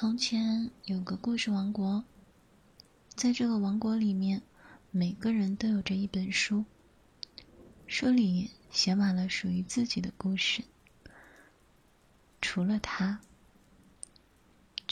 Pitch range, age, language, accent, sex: 195-225 Hz, 20-39, Chinese, native, female